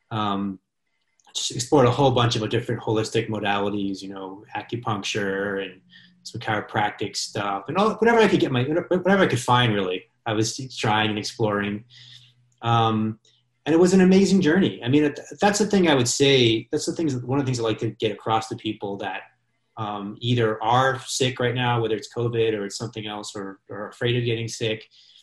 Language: English